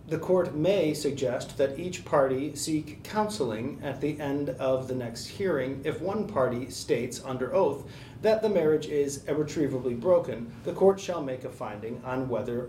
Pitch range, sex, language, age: 125-160 Hz, male, English, 30-49